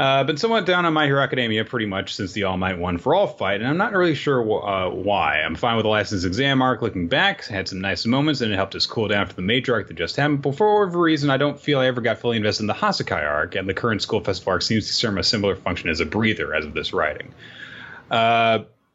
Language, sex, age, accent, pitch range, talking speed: English, male, 30-49, American, 90-135 Hz, 280 wpm